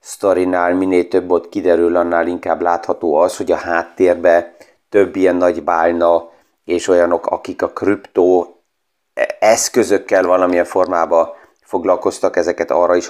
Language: Hungarian